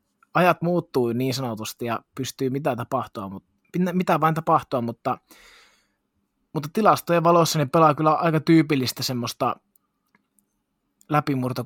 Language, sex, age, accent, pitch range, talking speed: Finnish, male, 20-39, native, 120-155 Hz, 110 wpm